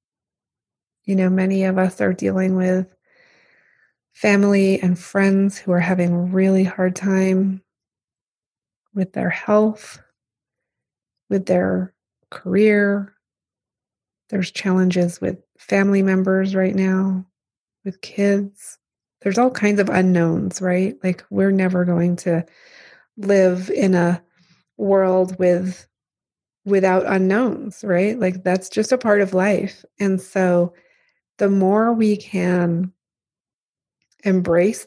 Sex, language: female, English